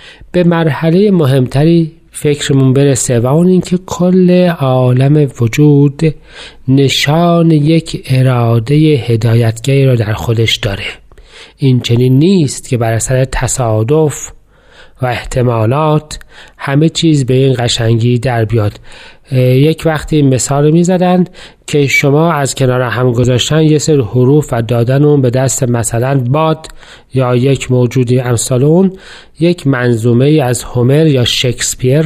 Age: 40-59